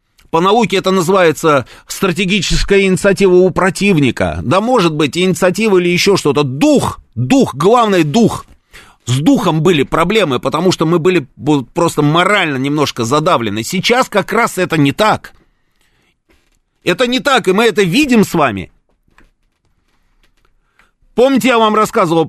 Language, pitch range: Russian, 145-195 Hz